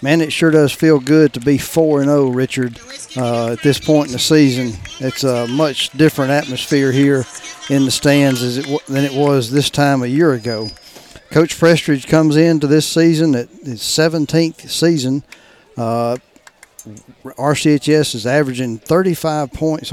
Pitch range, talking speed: 125-155 Hz, 165 wpm